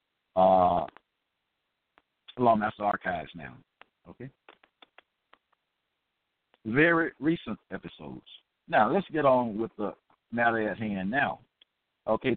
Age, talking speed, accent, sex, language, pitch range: 60-79, 105 wpm, American, male, English, 120-170 Hz